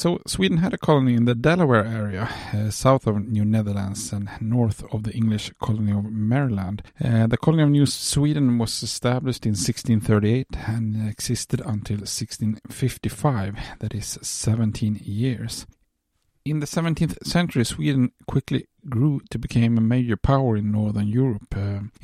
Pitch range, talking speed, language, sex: 105-125 Hz, 150 wpm, English, male